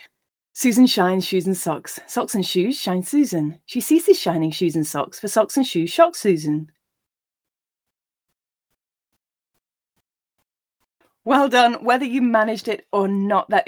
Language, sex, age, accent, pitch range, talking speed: English, female, 30-49, British, 175-235 Hz, 135 wpm